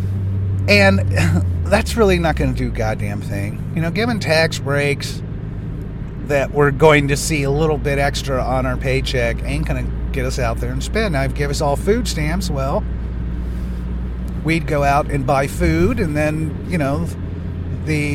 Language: English